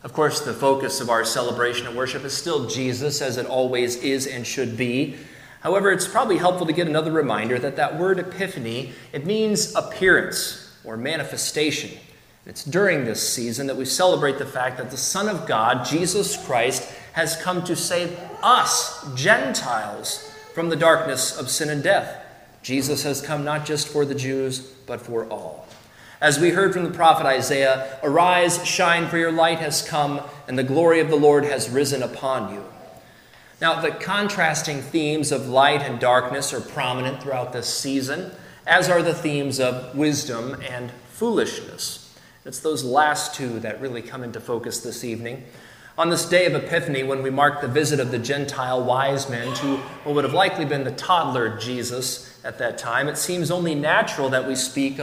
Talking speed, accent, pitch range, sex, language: 180 wpm, American, 125-160 Hz, male, English